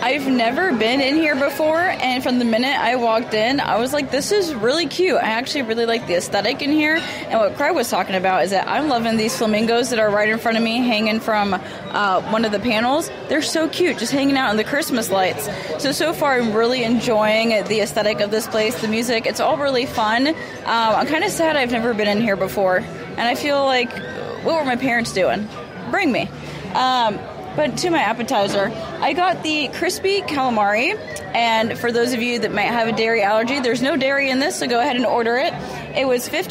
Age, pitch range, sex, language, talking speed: 20-39, 215-275 Hz, female, English, 225 wpm